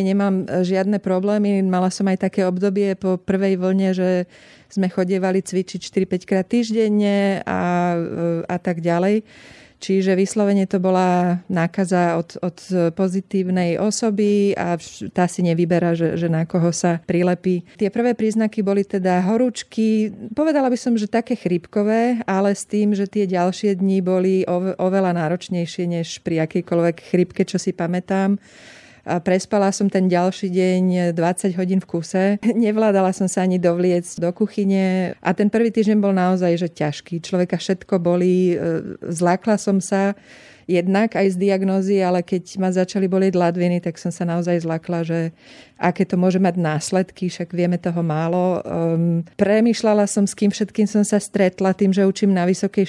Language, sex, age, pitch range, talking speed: Slovak, female, 30-49, 175-200 Hz, 160 wpm